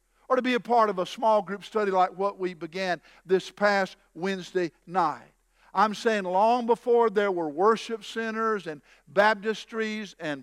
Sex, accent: male, American